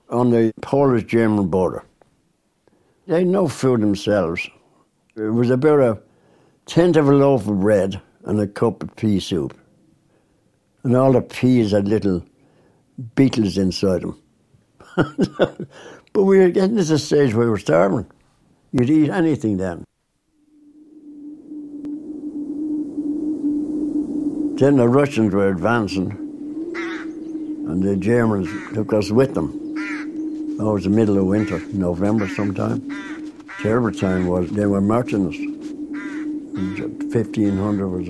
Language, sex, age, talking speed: English, male, 60-79, 125 wpm